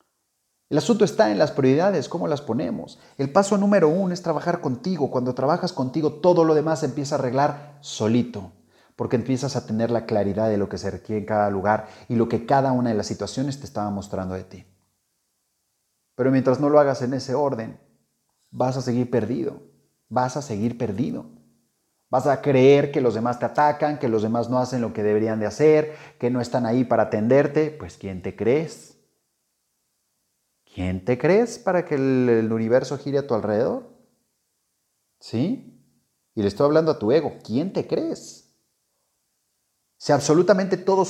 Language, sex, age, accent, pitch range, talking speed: Spanish, male, 30-49, Mexican, 105-145 Hz, 180 wpm